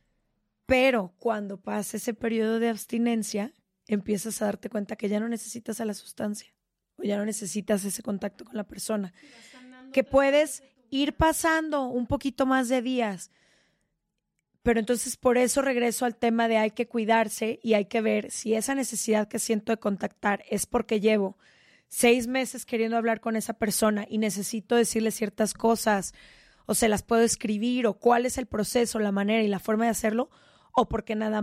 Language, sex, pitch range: Spanish, female, 210-250 Hz